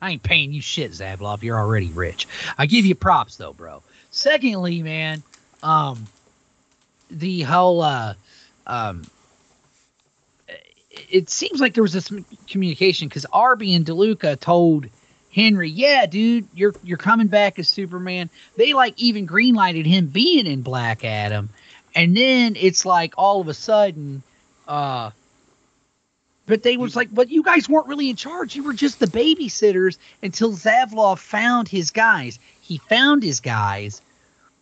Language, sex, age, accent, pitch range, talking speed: English, male, 30-49, American, 135-210 Hz, 150 wpm